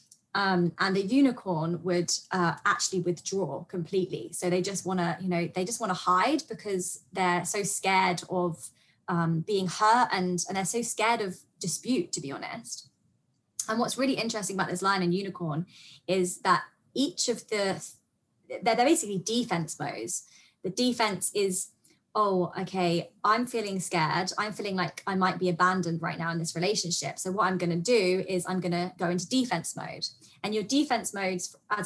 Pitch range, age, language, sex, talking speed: 175-215 Hz, 20-39, English, female, 180 wpm